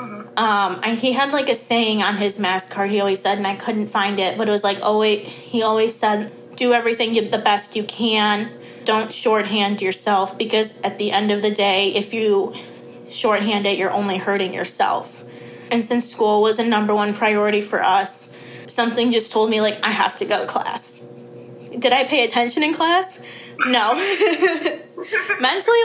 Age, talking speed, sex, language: 20-39, 190 wpm, female, English